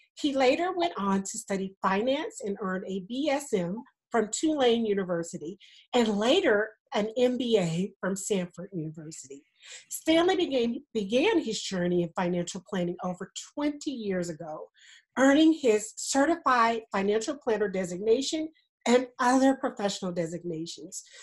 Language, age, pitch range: English, 50-69, 185-275 Hz